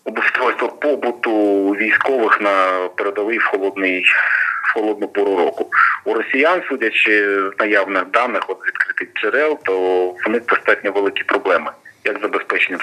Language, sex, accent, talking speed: Ukrainian, male, native, 130 wpm